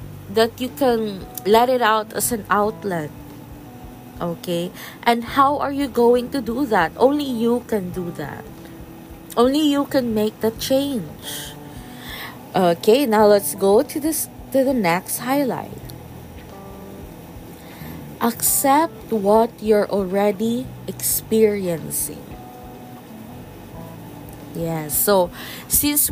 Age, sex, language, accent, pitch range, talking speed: 20-39, female, English, Filipino, 180-245 Hz, 110 wpm